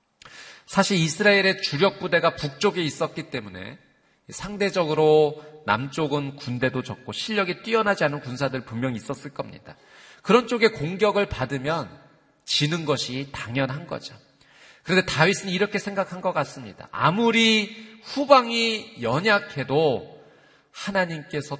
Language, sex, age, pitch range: Korean, male, 40-59, 125-185 Hz